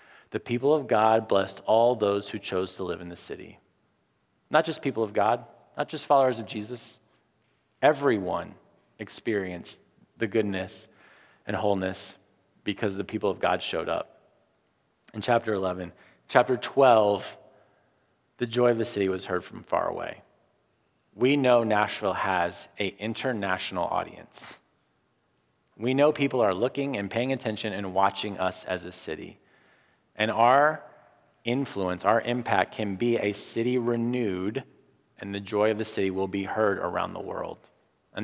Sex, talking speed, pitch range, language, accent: male, 150 wpm, 95-120 Hz, English, American